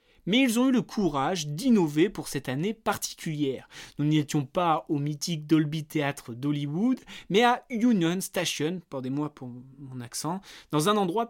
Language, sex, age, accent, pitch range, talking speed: French, male, 20-39, French, 140-190 Hz, 165 wpm